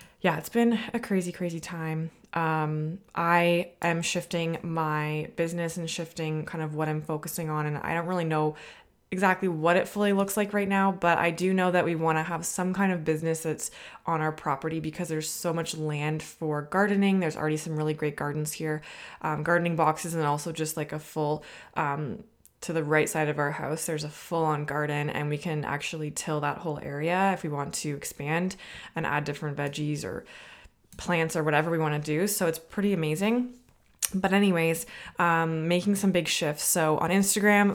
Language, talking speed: English, 200 wpm